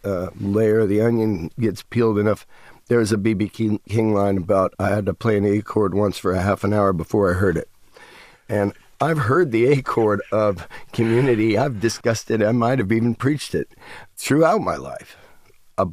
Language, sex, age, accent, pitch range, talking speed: English, male, 50-69, American, 95-115 Hz, 200 wpm